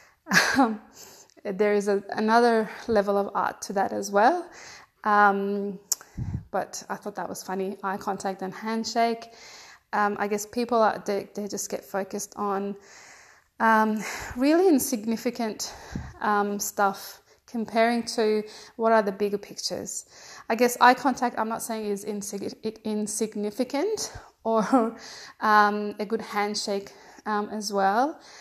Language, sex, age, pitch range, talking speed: Persian, female, 20-39, 205-235 Hz, 130 wpm